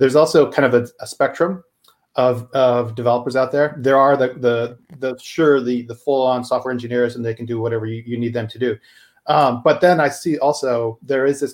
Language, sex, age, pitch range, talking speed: English, male, 40-59, 120-145 Hz, 230 wpm